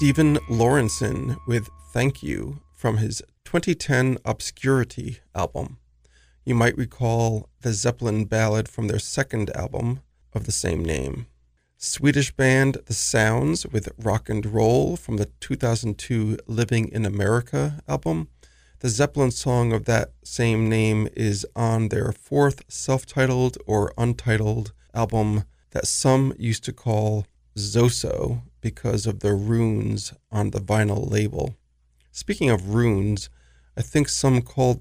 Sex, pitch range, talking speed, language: male, 105-125 Hz, 130 wpm, English